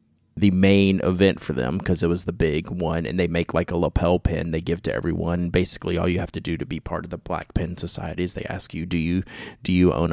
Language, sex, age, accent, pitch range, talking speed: English, male, 30-49, American, 85-110 Hz, 265 wpm